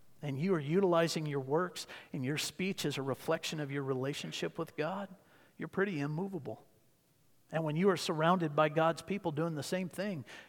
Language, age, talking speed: English, 50-69, 185 wpm